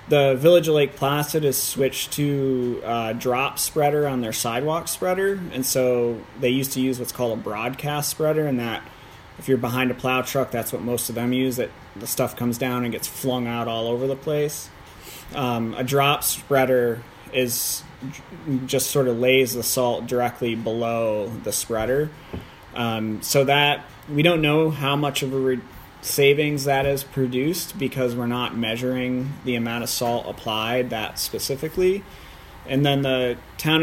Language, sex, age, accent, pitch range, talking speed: English, male, 30-49, American, 115-135 Hz, 175 wpm